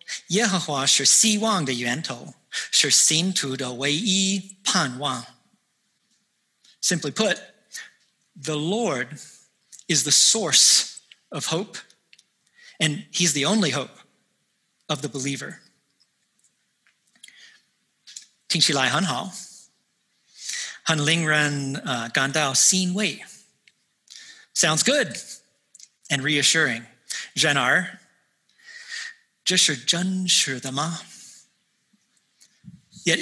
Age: 40-59